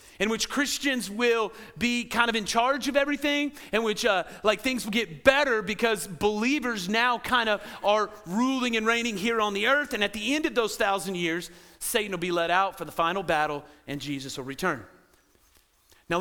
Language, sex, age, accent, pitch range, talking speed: English, male, 40-59, American, 190-260 Hz, 200 wpm